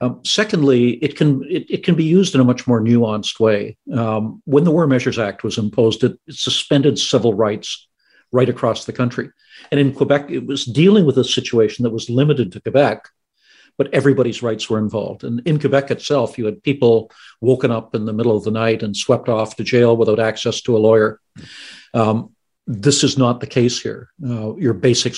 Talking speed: 200 wpm